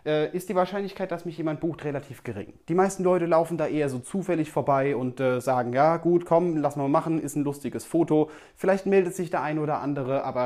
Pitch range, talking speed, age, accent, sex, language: 125-170 Hz, 225 wpm, 30-49, German, male, German